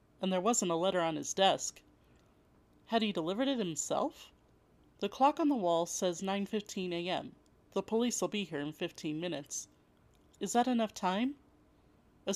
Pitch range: 170-220 Hz